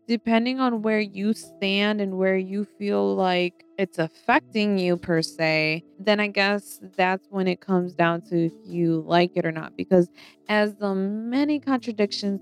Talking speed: 170 wpm